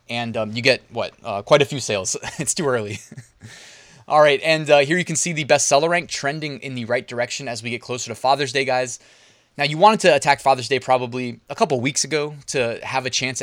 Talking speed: 235 wpm